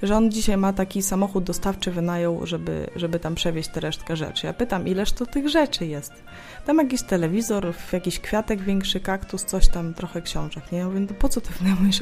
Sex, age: female, 20-39